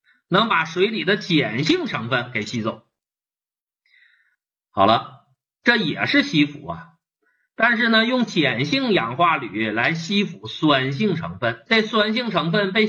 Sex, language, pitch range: male, Chinese, 125-190 Hz